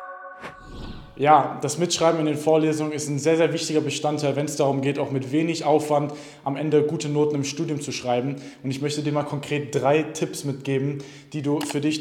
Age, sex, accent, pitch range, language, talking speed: 20-39, male, German, 140-155 Hz, German, 205 wpm